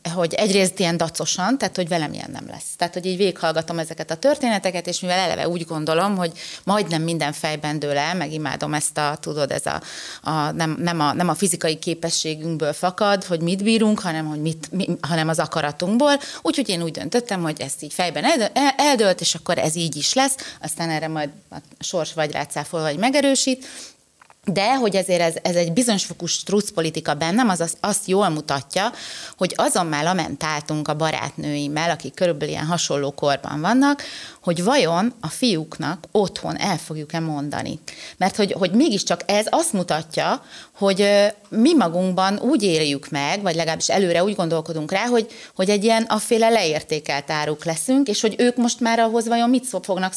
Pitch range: 160-200 Hz